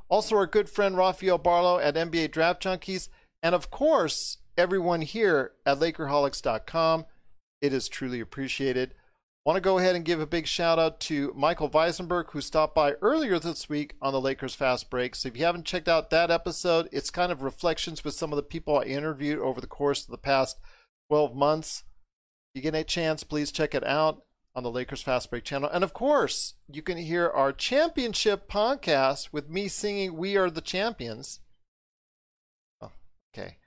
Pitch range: 140-180 Hz